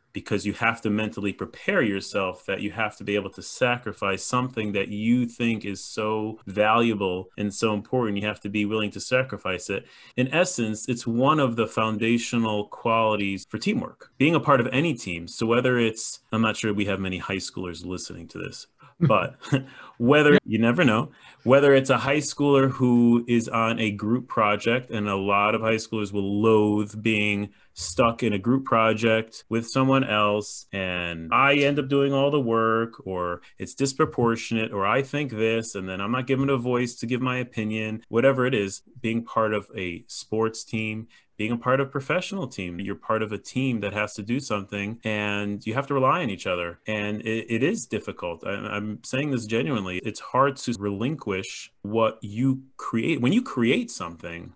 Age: 30-49